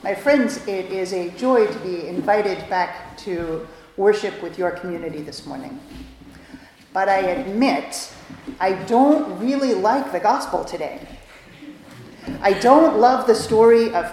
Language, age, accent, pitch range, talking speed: English, 40-59, American, 195-270 Hz, 140 wpm